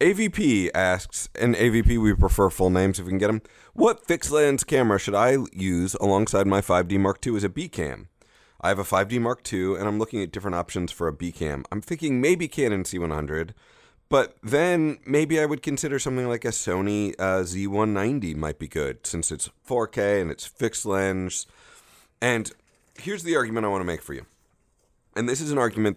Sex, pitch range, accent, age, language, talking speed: male, 90-120 Hz, American, 30-49, English, 195 wpm